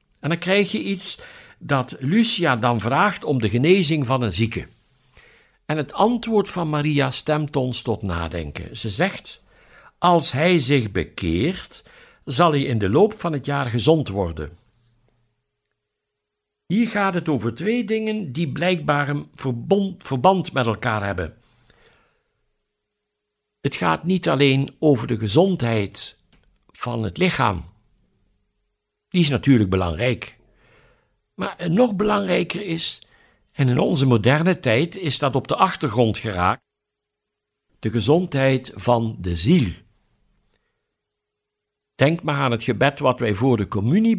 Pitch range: 115-170 Hz